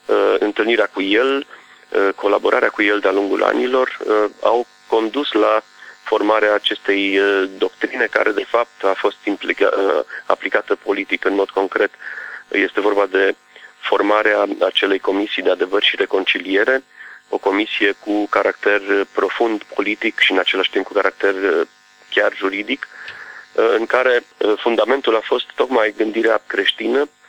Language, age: Romanian, 30-49